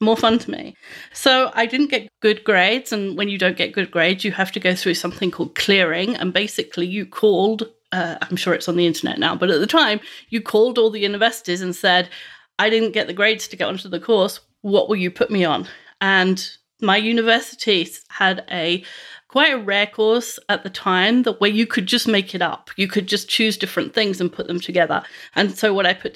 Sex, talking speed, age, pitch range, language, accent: female, 225 wpm, 30-49, 185-230 Hz, English, British